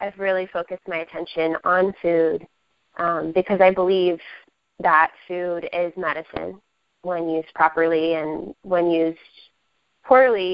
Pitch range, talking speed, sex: 175-210 Hz, 125 wpm, female